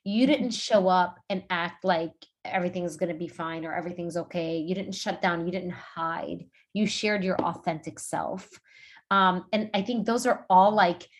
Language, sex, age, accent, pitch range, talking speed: English, female, 30-49, American, 180-230 Hz, 190 wpm